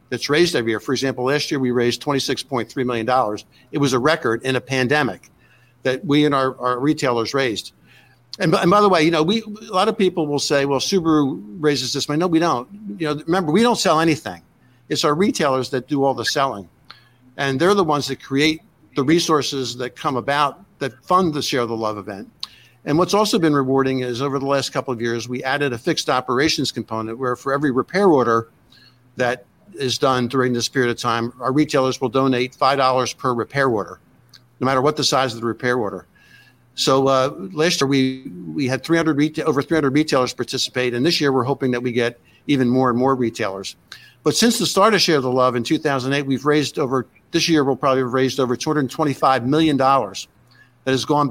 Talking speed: 215 wpm